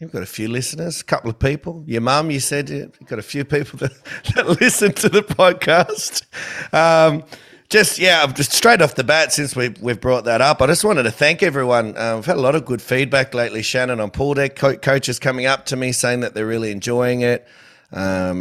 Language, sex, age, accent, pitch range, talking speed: English, male, 30-49, Australian, 110-135 Hz, 230 wpm